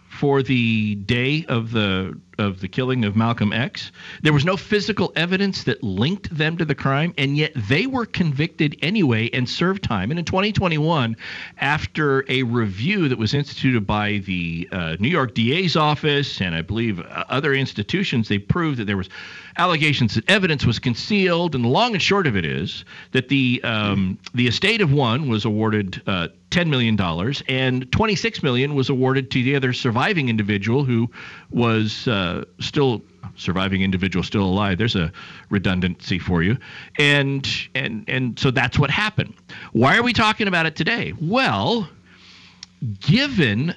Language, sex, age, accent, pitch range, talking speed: English, male, 50-69, American, 105-150 Hz, 170 wpm